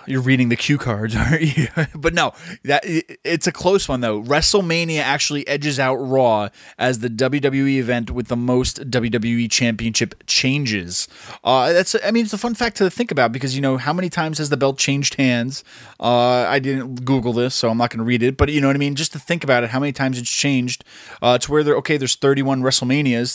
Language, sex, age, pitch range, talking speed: English, male, 20-39, 120-145 Hz, 225 wpm